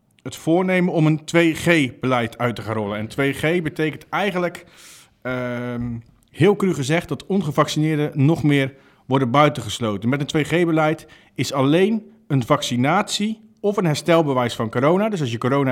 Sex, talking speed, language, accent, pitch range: male, 145 wpm, Dutch, Dutch, 125-175 Hz